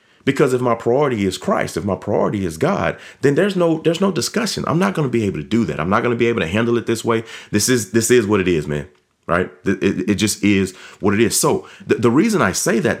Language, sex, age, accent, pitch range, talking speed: English, male, 30-49, American, 95-120 Hz, 275 wpm